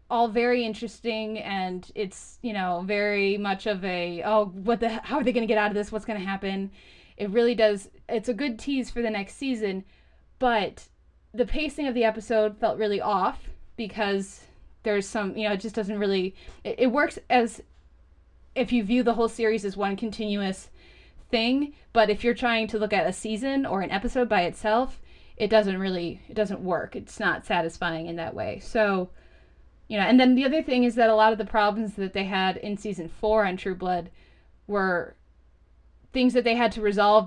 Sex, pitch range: female, 195-235 Hz